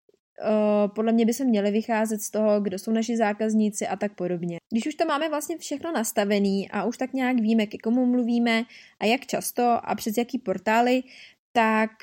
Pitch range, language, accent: 210-250 Hz, Czech, native